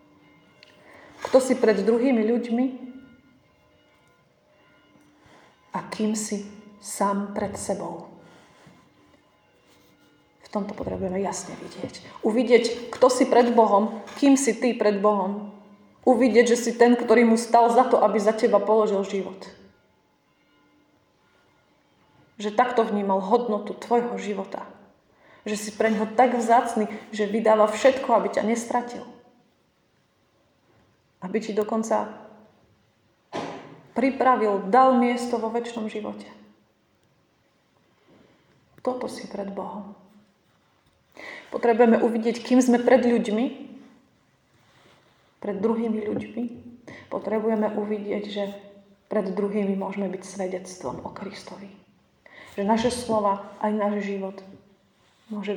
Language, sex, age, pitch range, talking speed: Slovak, female, 30-49, 205-240 Hz, 105 wpm